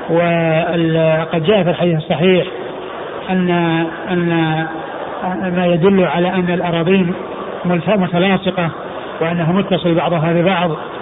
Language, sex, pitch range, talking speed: Arabic, male, 170-190 Hz, 100 wpm